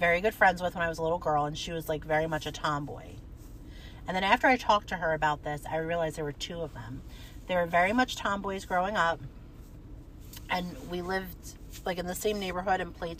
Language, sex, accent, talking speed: English, female, American, 230 wpm